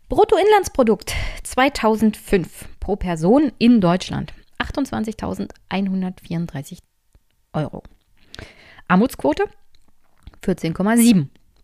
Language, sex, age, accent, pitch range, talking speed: German, female, 20-39, German, 180-240 Hz, 50 wpm